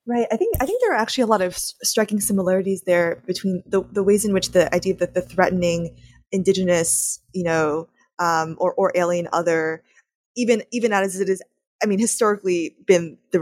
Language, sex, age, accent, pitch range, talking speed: English, female, 20-39, American, 170-210 Hz, 190 wpm